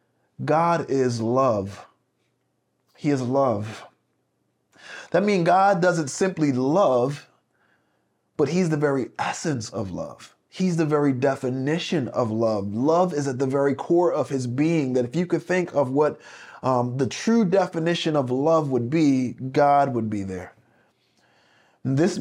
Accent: American